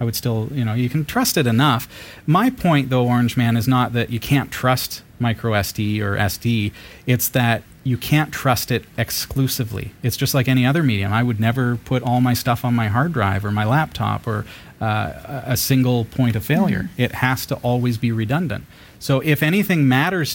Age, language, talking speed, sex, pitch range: 40-59, English, 205 wpm, male, 100-125 Hz